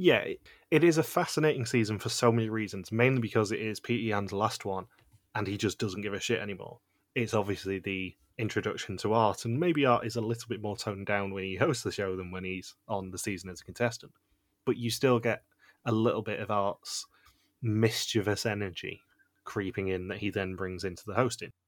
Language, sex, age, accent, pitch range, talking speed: English, male, 20-39, British, 100-120 Hz, 210 wpm